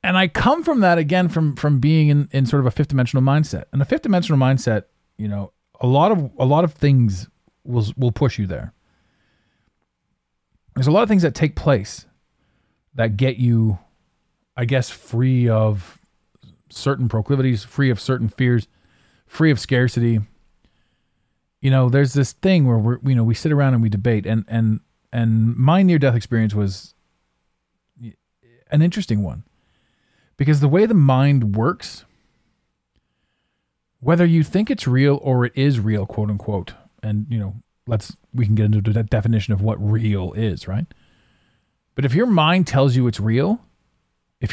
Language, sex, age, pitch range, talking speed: English, male, 40-59, 110-140 Hz, 170 wpm